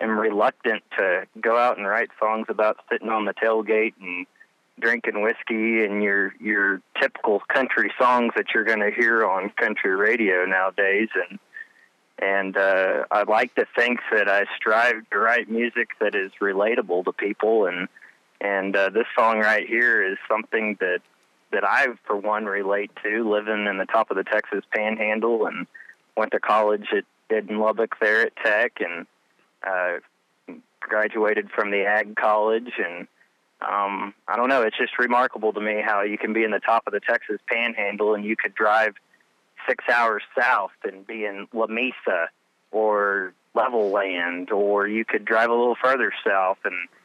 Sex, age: male, 20-39